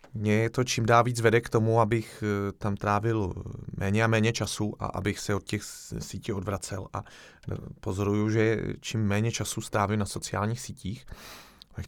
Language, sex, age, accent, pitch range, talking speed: Czech, male, 30-49, native, 105-125 Hz, 165 wpm